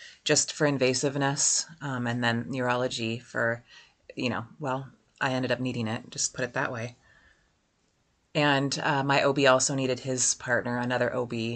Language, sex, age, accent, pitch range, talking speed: English, female, 30-49, American, 125-155 Hz, 160 wpm